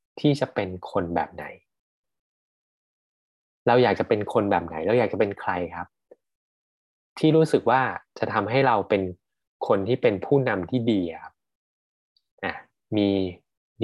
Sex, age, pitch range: male, 20-39, 100-140 Hz